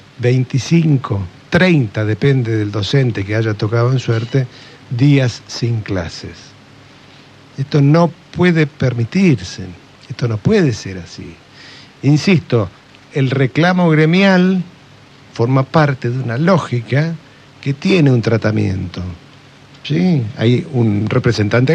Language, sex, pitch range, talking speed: Spanish, male, 110-150 Hz, 105 wpm